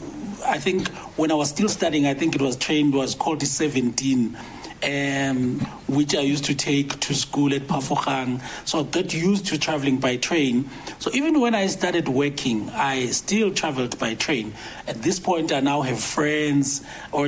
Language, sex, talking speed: English, male, 185 wpm